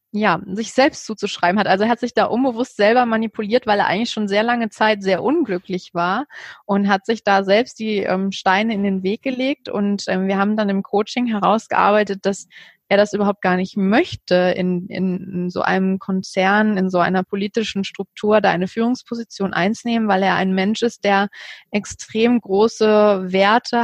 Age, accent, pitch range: 20-39, German, 195-220 Hz